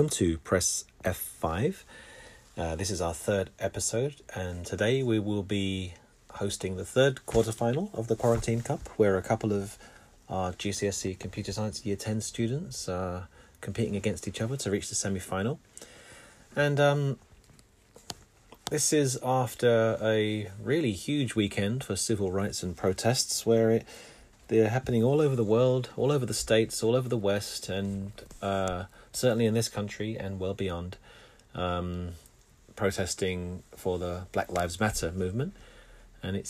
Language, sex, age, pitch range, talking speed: English, male, 30-49, 95-120 Hz, 150 wpm